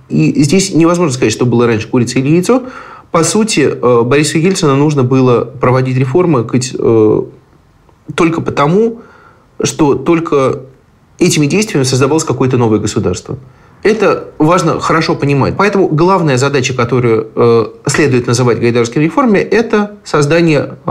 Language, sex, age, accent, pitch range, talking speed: Russian, male, 30-49, native, 125-170 Hz, 120 wpm